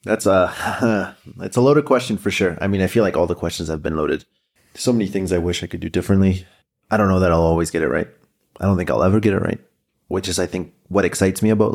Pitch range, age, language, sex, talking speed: 85-100 Hz, 30-49, English, male, 265 wpm